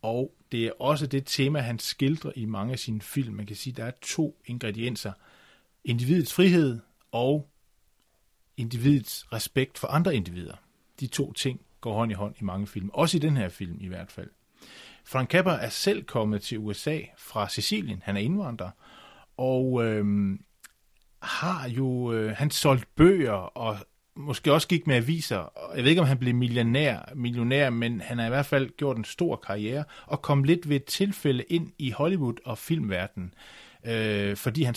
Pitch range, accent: 110-145 Hz, native